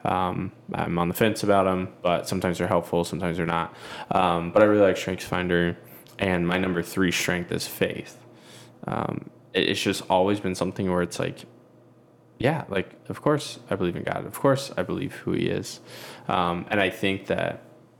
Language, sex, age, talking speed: English, male, 10-29, 185 wpm